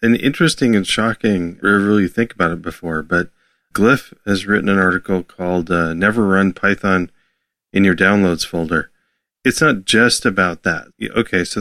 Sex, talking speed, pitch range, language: male, 170 wpm, 85-100 Hz, English